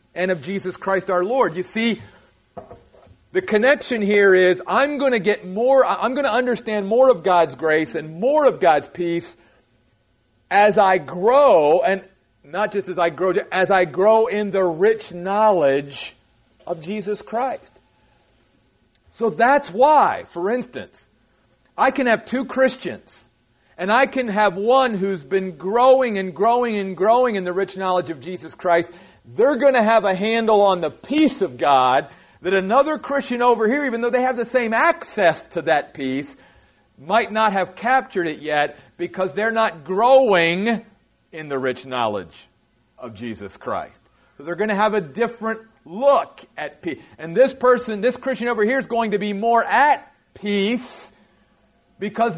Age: 40-59